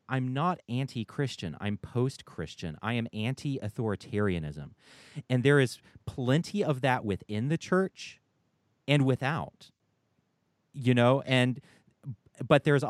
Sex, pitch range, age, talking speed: male, 105-140 Hz, 30-49, 110 wpm